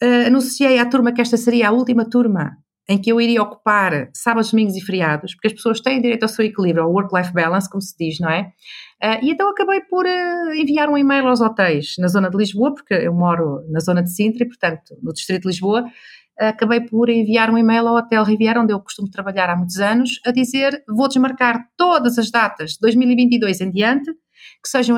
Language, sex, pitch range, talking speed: Portuguese, female, 210-265 Hz, 220 wpm